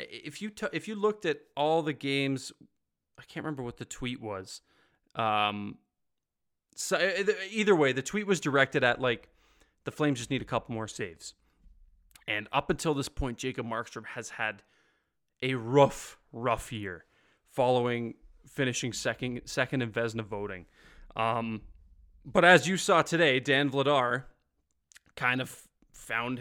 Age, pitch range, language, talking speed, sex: 20-39, 115-140 Hz, English, 150 wpm, male